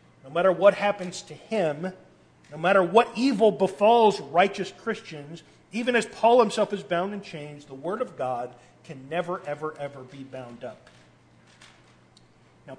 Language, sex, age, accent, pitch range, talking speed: English, male, 40-59, American, 155-195 Hz, 155 wpm